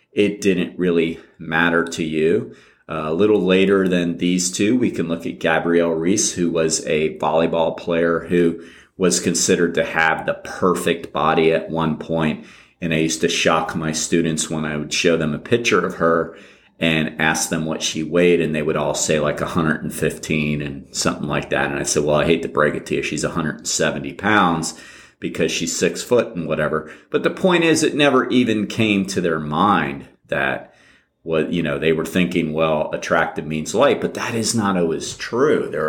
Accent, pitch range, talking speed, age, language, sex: American, 80-110 Hz, 195 wpm, 40-59, English, male